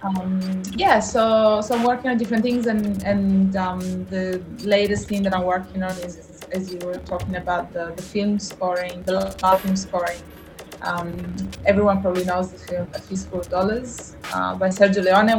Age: 20-39